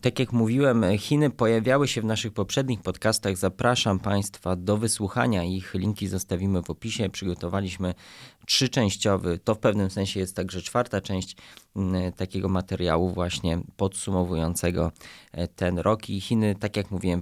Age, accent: 20-39, native